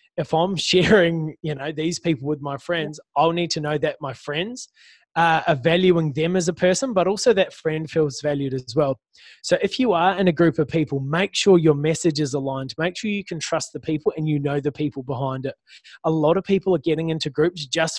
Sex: male